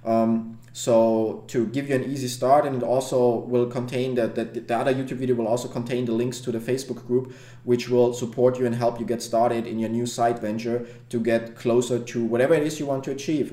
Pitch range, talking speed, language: 120-135 Hz, 235 wpm, English